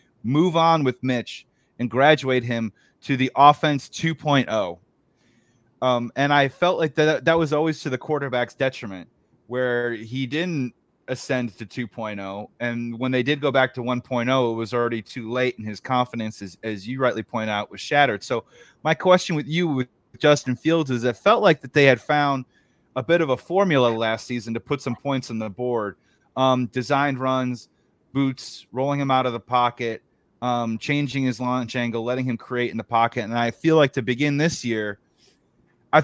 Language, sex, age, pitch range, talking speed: English, male, 30-49, 120-150 Hz, 190 wpm